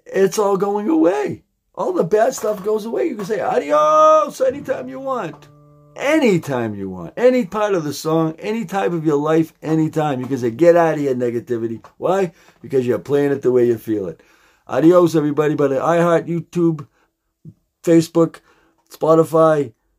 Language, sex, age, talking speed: English, male, 50-69, 170 wpm